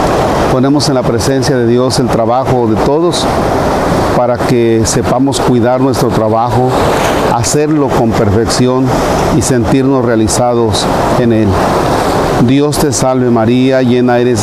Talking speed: 125 wpm